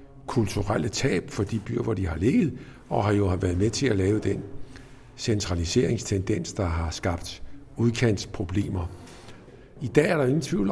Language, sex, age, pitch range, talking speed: Danish, male, 50-69, 100-130 Hz, 170 wpm